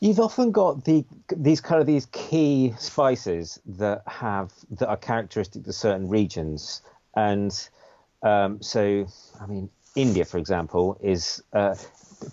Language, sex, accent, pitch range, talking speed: English, male, British, 90-110 Hz, 135 wpm